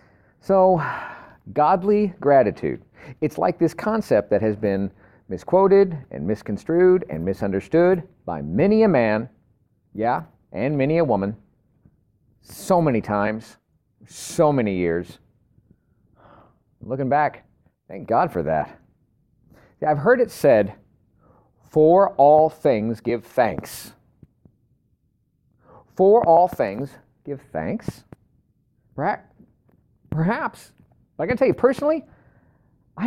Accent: American